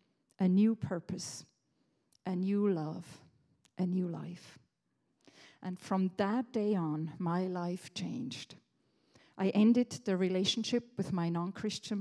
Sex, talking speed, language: female, 120 wpm, English